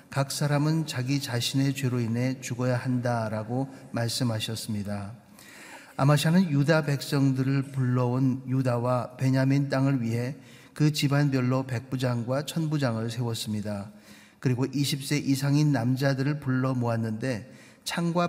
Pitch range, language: 125-140 Hz, Korean